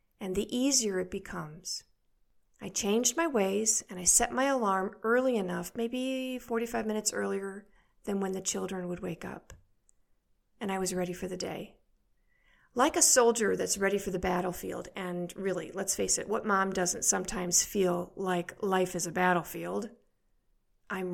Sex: female